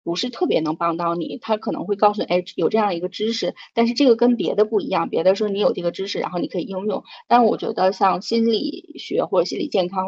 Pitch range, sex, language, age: 175-215 Hz, female, Chinese, 20-39